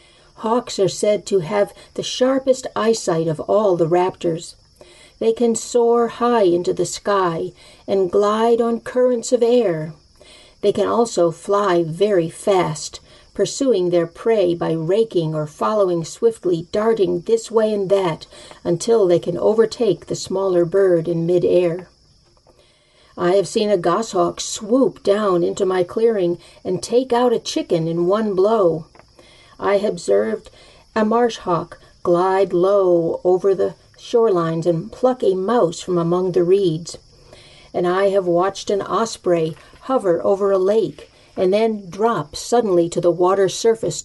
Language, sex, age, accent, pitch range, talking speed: English, female, 50-69, American, 170-225 Hz, 145 wpm